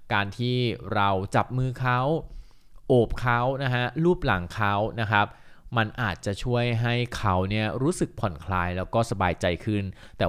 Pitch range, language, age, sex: 100-130 Hz, Thai, 20-39, male